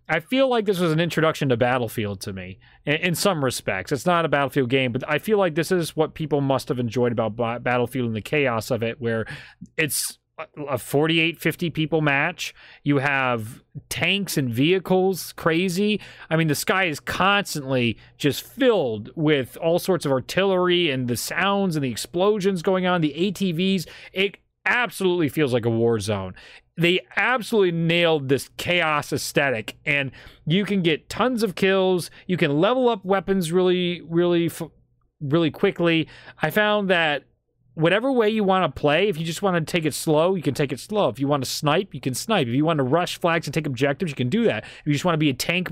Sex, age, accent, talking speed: male, 30-49, American, 200 wpm